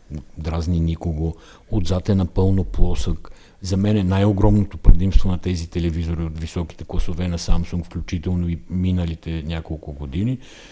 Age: 50-69